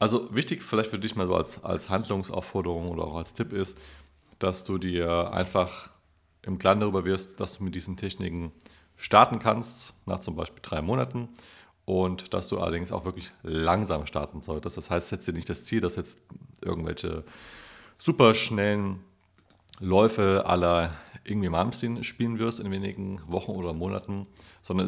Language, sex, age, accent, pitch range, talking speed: German, male, 30-49, German, 85-100 Hz, 160 wpm